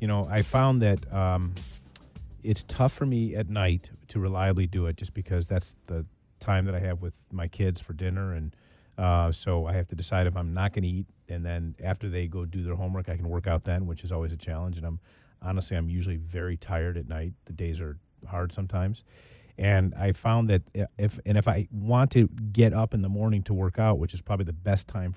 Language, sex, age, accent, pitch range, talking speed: English, male, 30-49, American, 90-110 Hz, 235 wpm